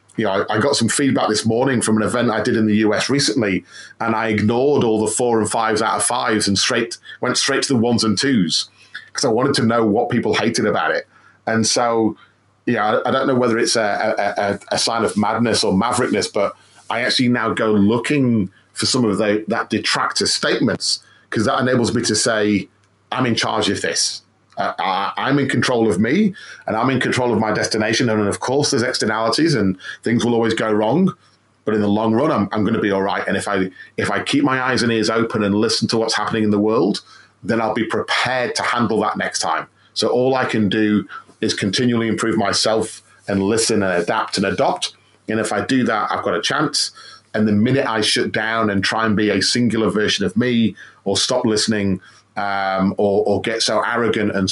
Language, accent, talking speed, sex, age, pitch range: English, British, 225 wpm, male, 30-49, 100-115 Hz